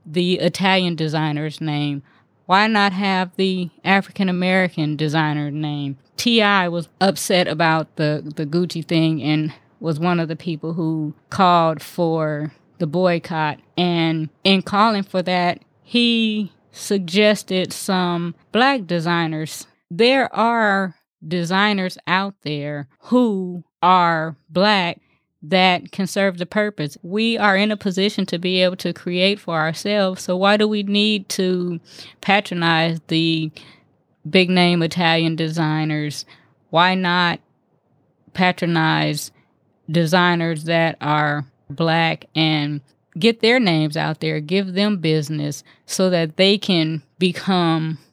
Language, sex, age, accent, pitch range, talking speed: English, female, 20-39, American, 155-190 Hz, 120 wpm